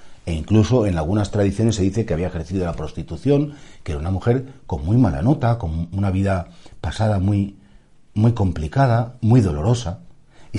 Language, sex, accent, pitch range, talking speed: Spanish, male, Spanish, 95-140 Hz, 170 wpm